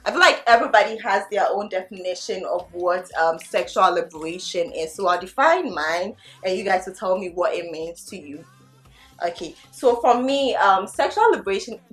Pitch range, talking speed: 180-220 Hz, 180 wpm